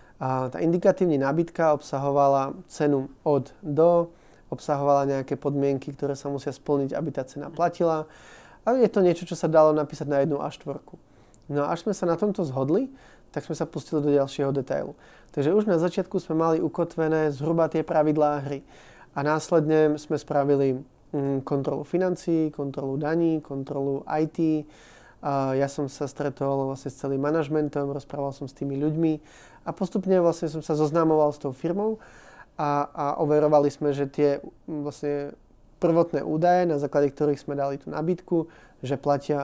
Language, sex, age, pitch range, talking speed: Czech, male, 20-39, 140-160 Hz, 160 wpm